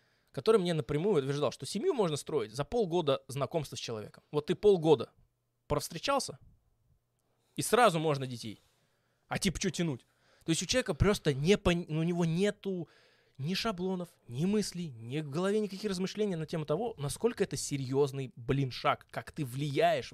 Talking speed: 165 wpm